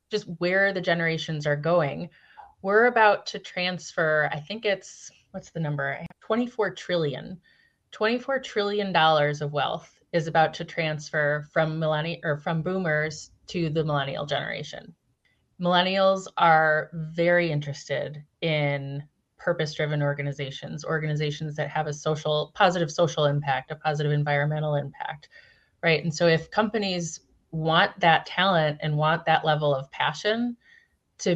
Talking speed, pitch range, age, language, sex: 140 wpm, 150-175 Hz, 30-49, English, female